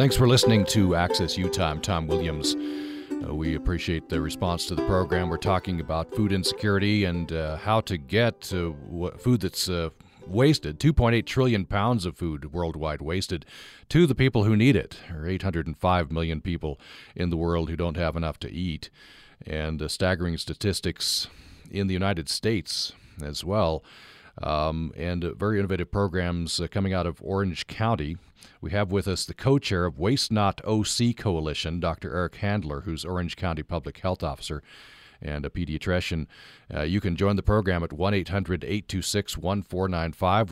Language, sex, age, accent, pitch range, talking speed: English, male, 40-59, American, 80-100 Hz, 165 wpm